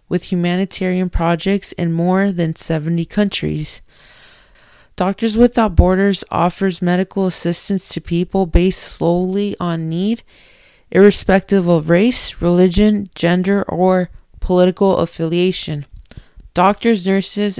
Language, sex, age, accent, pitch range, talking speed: English, female, 20-39, American, 170-195 Hz, 100 wpm